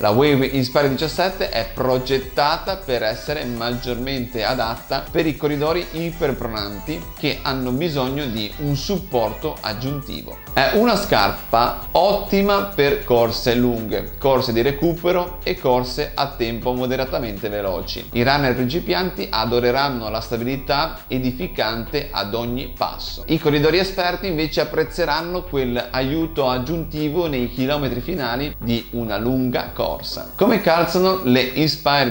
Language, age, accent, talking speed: Italian, 30-49, native, 125 wpm